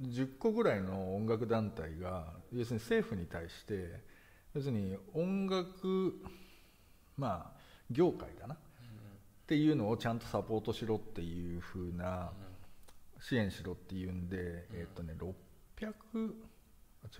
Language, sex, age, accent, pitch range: Japanese, male, 50-69, native, 95-130 Hz